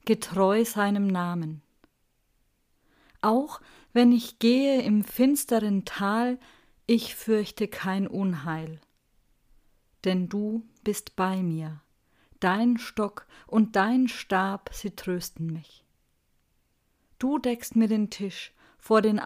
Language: German